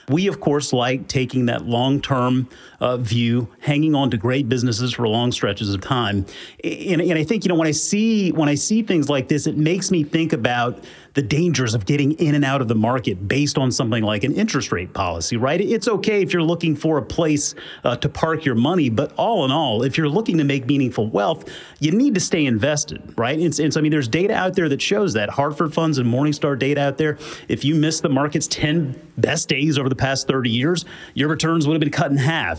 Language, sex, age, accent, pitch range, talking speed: English, male, 30-49, American, 135-180 Hz, 235 wpm